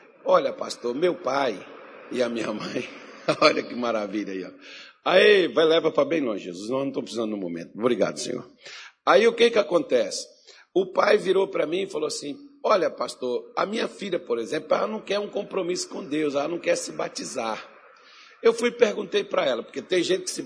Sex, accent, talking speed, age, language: male, Brazilian, 205 wpm, 60-79, Portuguese